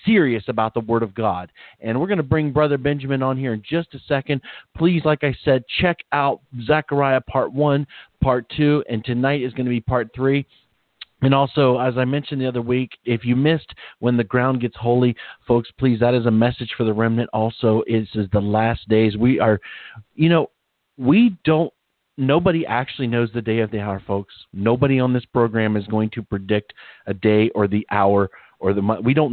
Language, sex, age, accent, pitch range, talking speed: English, male, 40-59, American, 110-140 Hz, 205 wpm